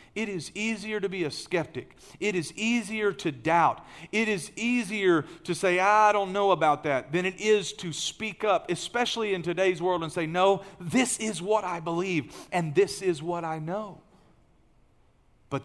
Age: 40-59